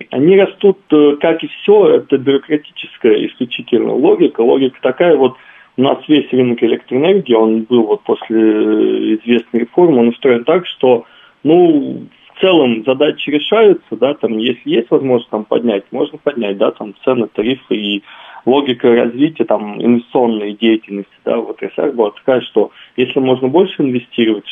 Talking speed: 145 wpm